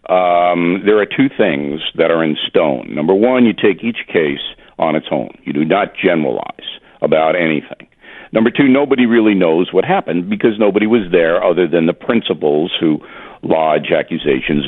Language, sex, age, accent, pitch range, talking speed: English, male, 50-69, American, 80-115 Hz, 170 wpm